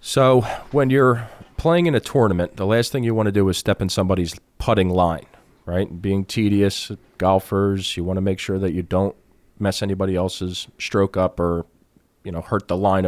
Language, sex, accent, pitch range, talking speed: English, male, American, 90-105 Hz, 195 wpm